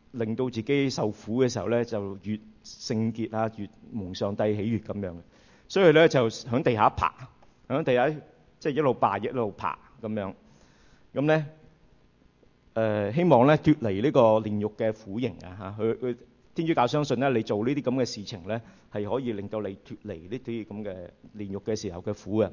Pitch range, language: 105-130 Hz, English